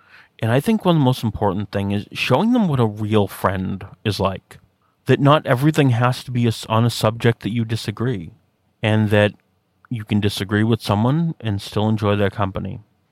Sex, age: male, 30-49